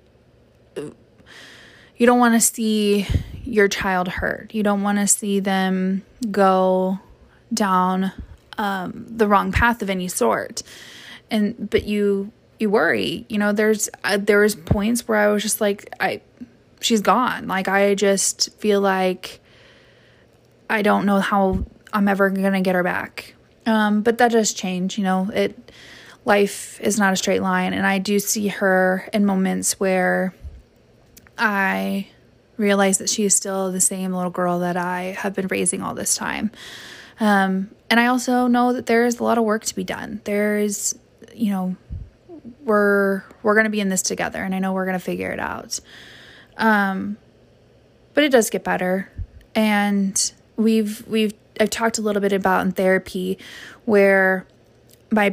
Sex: female